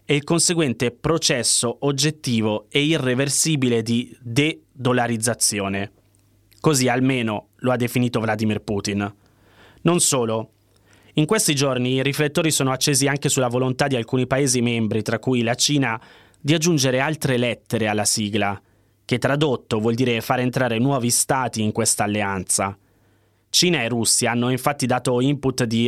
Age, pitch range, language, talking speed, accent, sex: 20-39, 110-135 Hz, Italian, 145 wpm, native, male